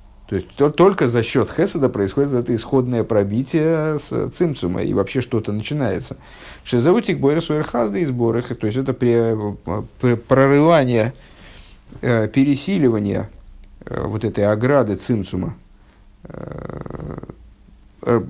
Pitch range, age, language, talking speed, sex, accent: 105-135 Hz, 50-69, Russian, 110 wpm, male, native